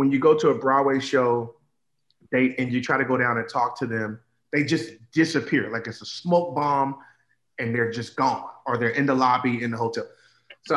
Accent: American